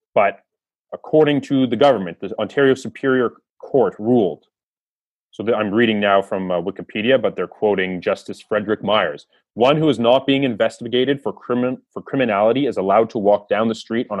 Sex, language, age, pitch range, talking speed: male, English, 30-49, 105-140 Hz, 175 wpm